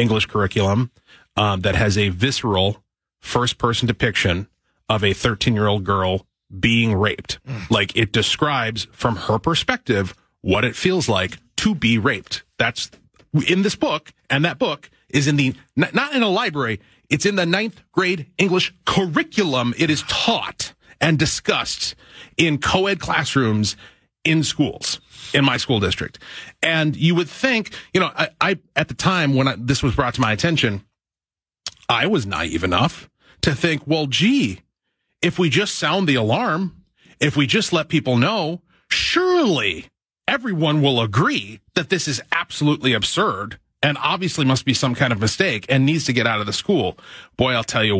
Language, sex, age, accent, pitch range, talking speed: English, male, 30-49, American, 110-160 Hz, 160 wpm